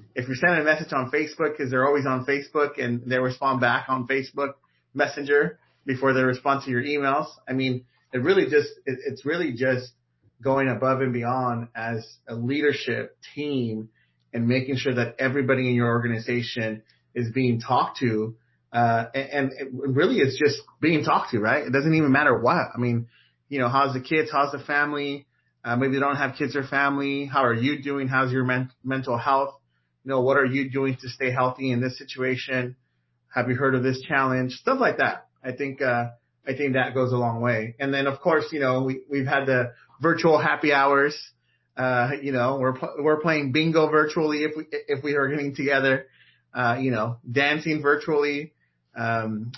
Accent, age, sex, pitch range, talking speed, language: American, 30-49, male, 120-140 Hz, 195 wpm, English